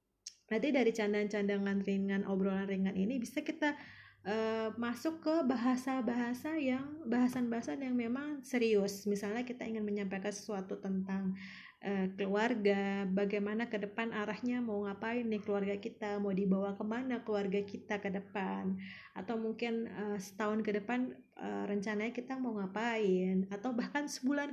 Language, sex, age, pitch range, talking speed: Indonesian, female, 20-39, 200-250 Hz, 130 wpm